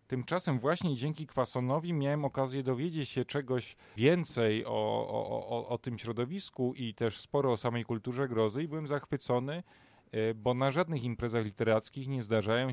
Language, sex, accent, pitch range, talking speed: Polish, male, native, 105-125 Hz, 150 wpm